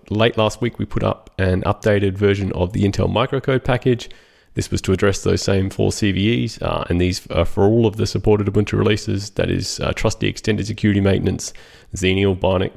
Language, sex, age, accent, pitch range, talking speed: English, male, 20-39, Australian, 95-110 Hz, 195 wpm